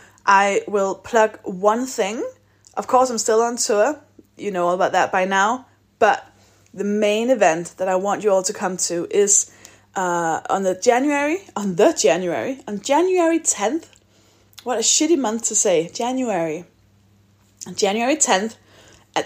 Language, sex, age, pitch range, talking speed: English, female, 10-29, 190-265 Hz, 160 wpm